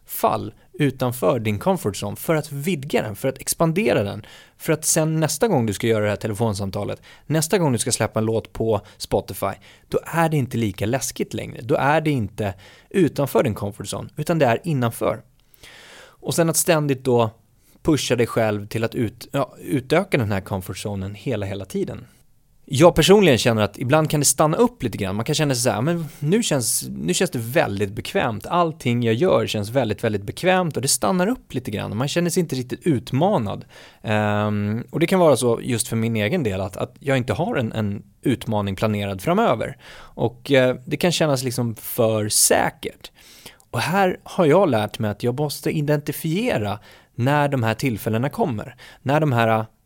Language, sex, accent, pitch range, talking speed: Swedish, male, native, 110-155 Hz, 195 wpm